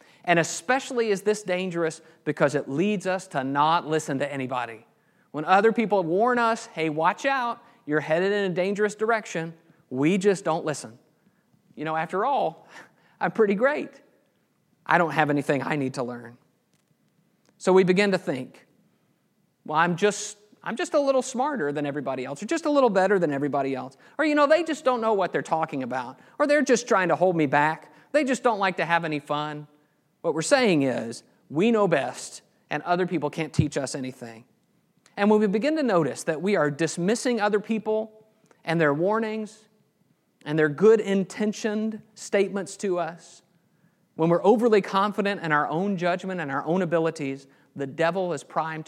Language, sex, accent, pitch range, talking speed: English, male, American, 155-210 Hz, 185 wpm